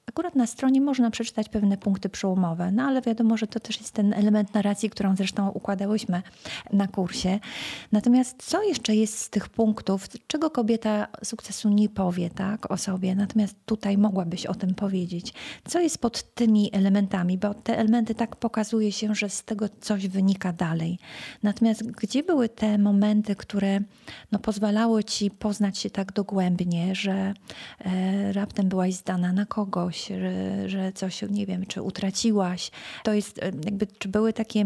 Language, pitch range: Polish, 190-220 Hz